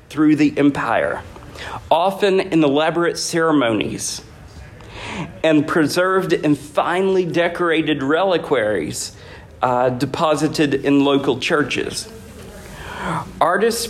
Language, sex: English, male